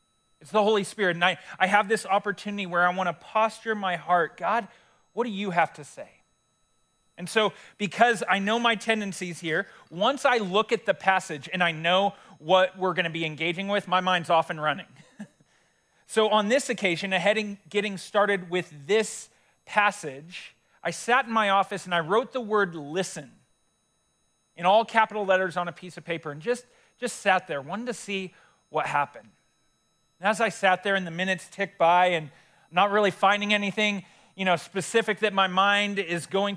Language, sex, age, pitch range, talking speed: English, male, 40-59, 170-205 Hz, 185 wpm